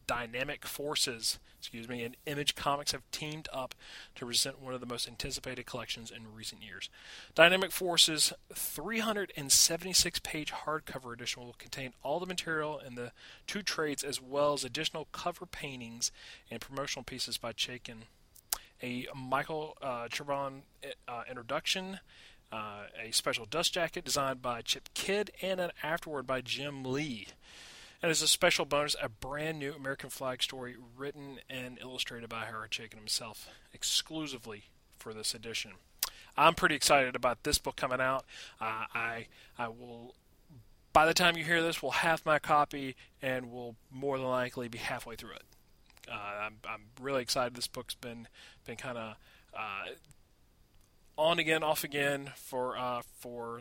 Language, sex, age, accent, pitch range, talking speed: English, male, 40-59, American, 120-150 Hz, 155 wpm